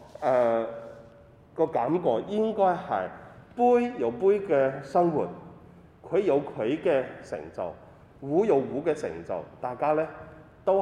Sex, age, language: male, 30-49, Chinese